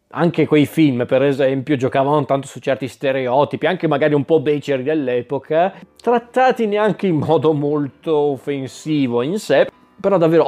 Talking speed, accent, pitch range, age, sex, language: 150 wpm, native, 135-155 Hz, 20-39, male, Italian